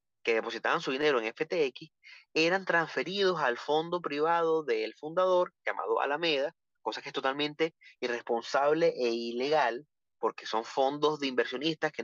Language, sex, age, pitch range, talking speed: Spanish, male, 30-49, 130-190 Hz, 140 wpm